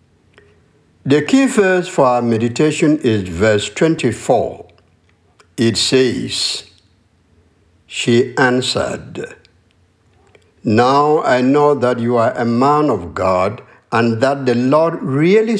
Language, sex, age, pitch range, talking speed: English, male, 60-79, 110-145 Hz, 110 wpm